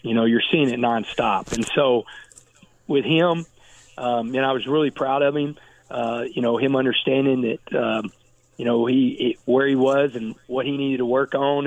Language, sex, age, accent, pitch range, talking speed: English, male, 40-59, American, 125-145 Hz, 200 wpm